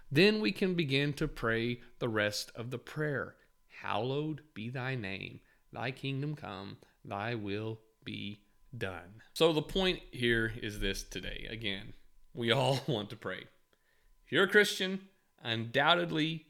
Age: 40-59